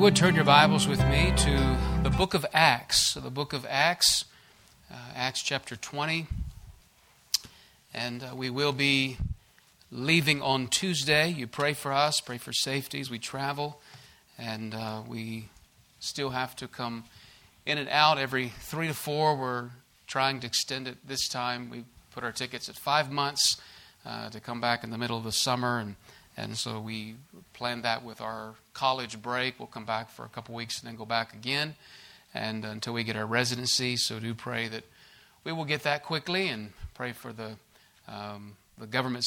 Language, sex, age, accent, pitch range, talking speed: English, male, 40-59, American, 115-135 Hz, 185 wpm